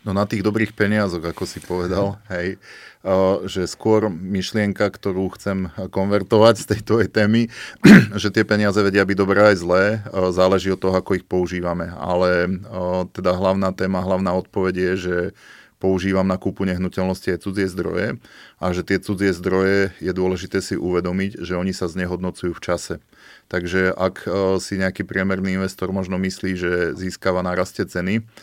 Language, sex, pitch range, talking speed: Slovak, male, 90-100 Hz, 160 wpm